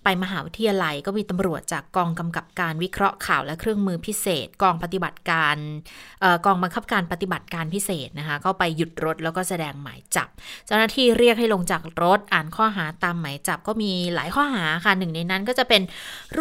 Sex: female